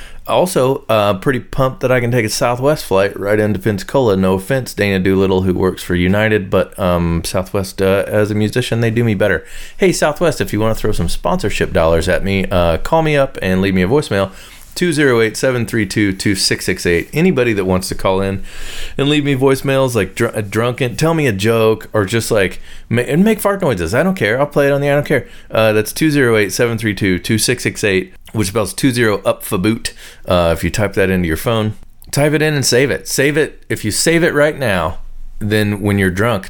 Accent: American